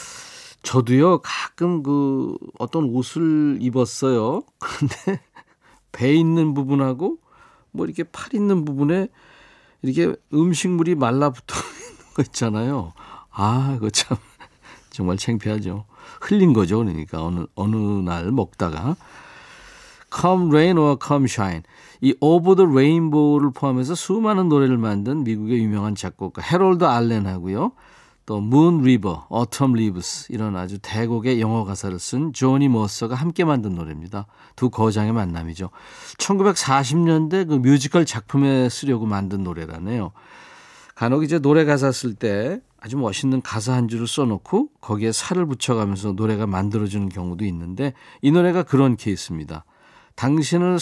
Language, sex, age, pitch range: Korean, male, 50-69, 105-160 Hz